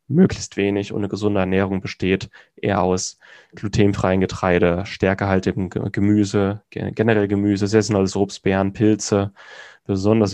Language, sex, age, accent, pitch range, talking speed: German, male, 10-29, German, 95-115 Hz, 115 wpm